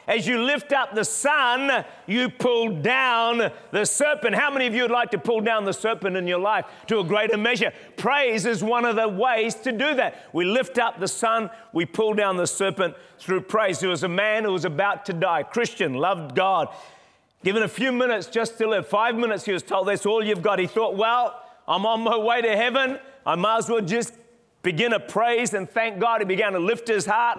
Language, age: English, 40-59